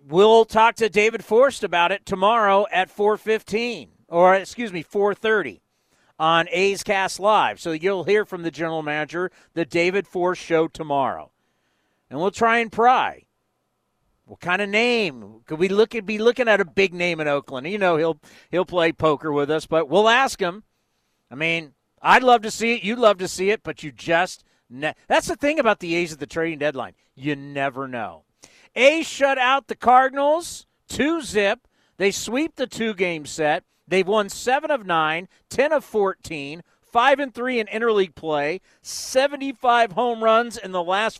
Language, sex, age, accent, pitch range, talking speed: English, male, 40-59, American, 170-225 Hz, 170 wpm